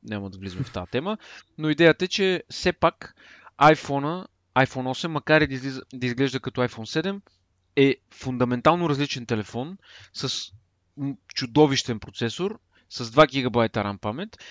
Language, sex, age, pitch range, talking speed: Bulgarian, male, 30-49, 120-155 Hz, 140 wpm